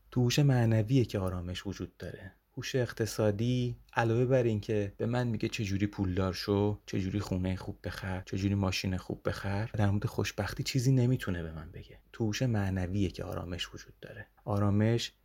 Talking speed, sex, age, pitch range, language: 165 wpm, male, 30-49, 95-115 Hz, Persian